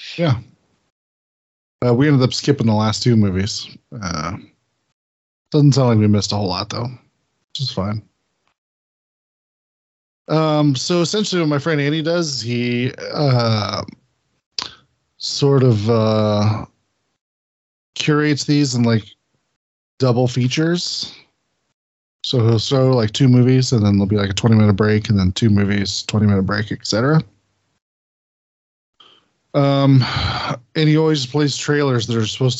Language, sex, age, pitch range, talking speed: English, male, 20-39, 105-140 Hz, 135 wpm